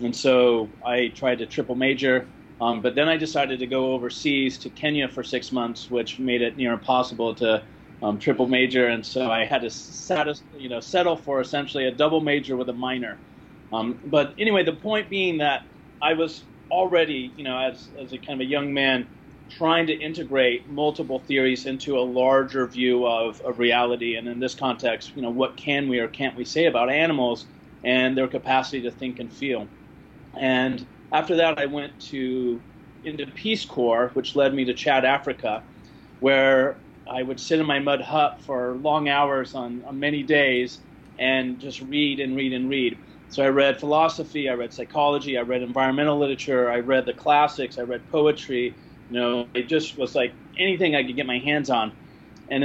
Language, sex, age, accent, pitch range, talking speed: English, male, 30-49, American, 125-145 Hz, 190 wpm